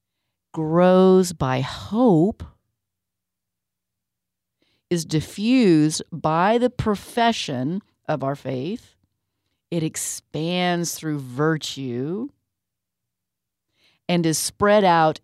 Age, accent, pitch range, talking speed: 40-59, American, 145-185 Hz, 75 wpm